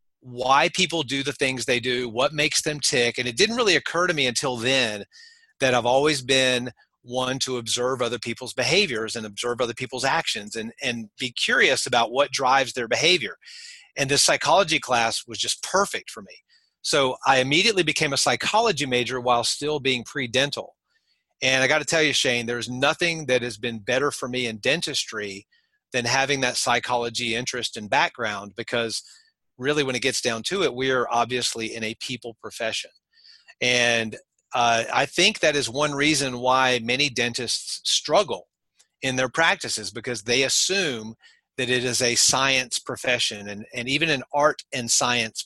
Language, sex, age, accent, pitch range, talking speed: English, male, 40-59, American, 120-145 Hz, 175 wpm